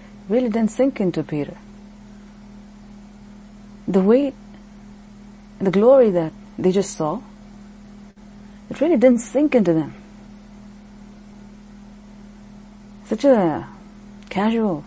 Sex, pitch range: female, 190-210 Hz